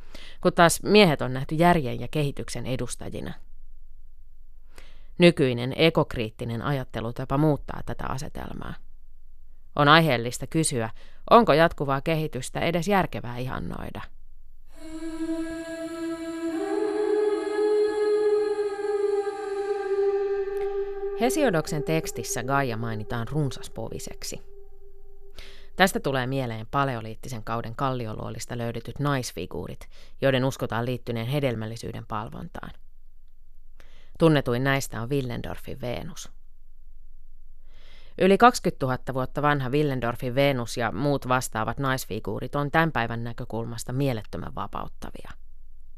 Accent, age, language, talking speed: native, 30-49, Finnish, 85 wpm